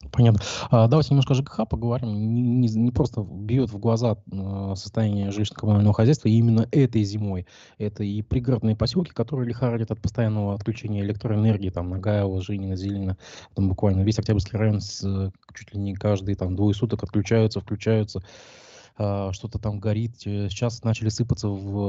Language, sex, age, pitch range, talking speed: Russian, male, 20-39, 95-110 Hz, 155 wpm